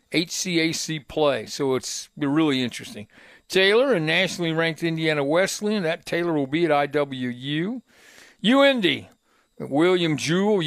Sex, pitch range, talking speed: male, 145-185 Hz, 120 wpm